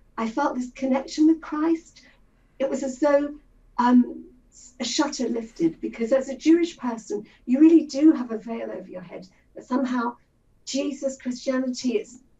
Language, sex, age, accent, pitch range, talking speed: English, female, 50-69, British, 230-295 Hz, 155 wpm